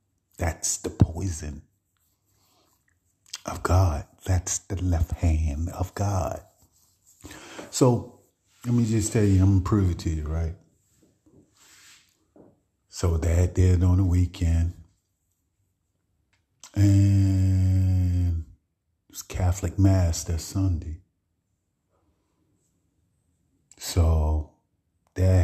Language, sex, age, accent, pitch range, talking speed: English, male, 40-59, American, 85-100 Hz, 95 wpm